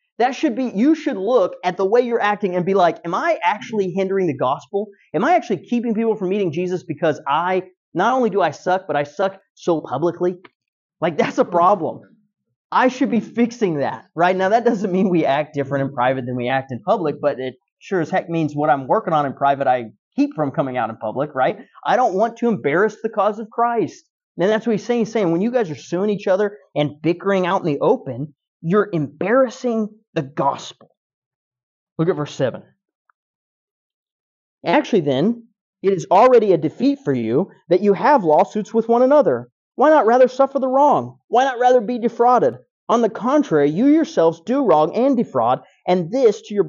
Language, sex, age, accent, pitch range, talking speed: English, male, 30-49, American, 155-230 Hz, 205 wpm